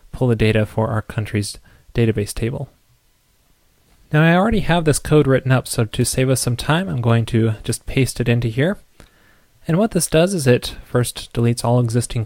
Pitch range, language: 110-140 Hz, English